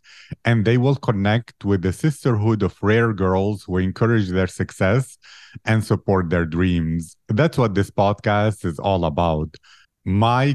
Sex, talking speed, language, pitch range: male, 150 wpm, English, 95-115 Hz